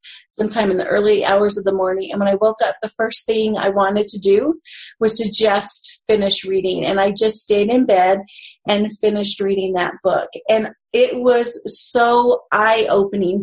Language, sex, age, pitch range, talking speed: English, female, 30-49, 200-250 Hz, 185 wpm